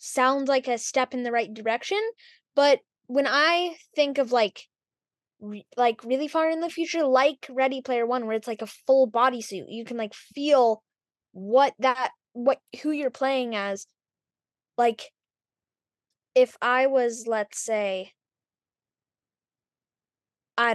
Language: English